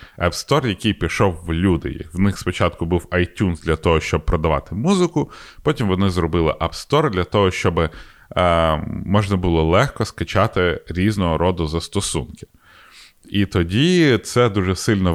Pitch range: 85-105 Hz